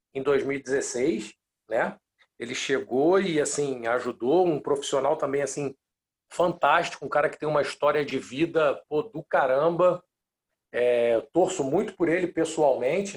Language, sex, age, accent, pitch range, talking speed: Portuguese, male, 50-69, Brazilian, 150-195 Hz, 135 wpm